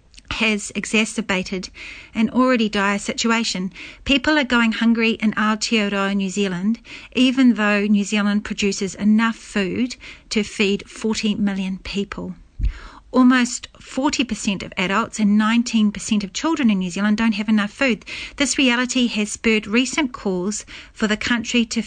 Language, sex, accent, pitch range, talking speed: English, female, Australian, 200-235 Hz, 140 wpm